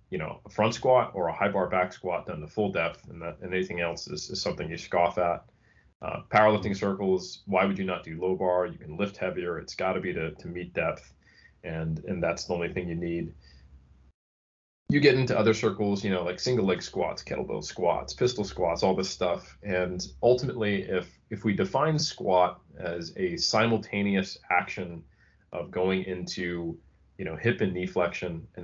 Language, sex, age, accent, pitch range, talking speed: English, male, 30-49, American, 85-100 Hz, 195 wpm